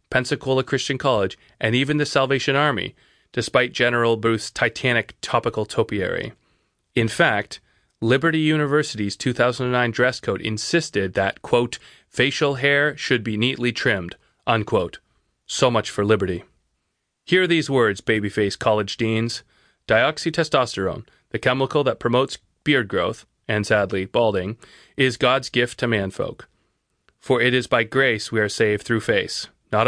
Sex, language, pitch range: male, English, 110-140 Hz